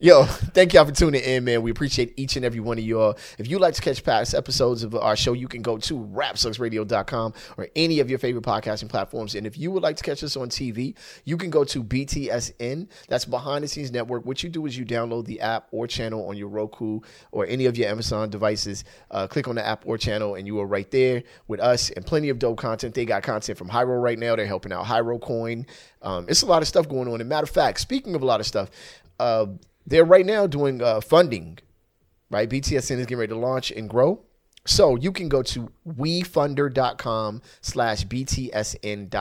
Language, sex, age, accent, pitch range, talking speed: English, male, 30-49, American, 110-135 Hz, 230 wpm